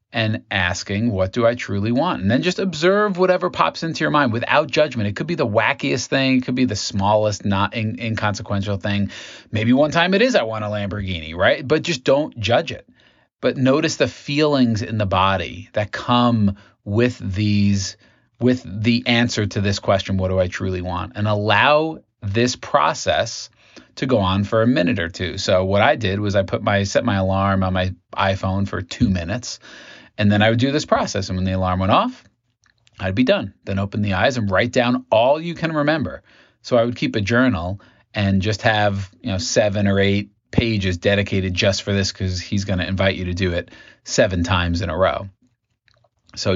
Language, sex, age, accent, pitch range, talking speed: English, male, 30-49, American, 100-125 Hz, 205 wpm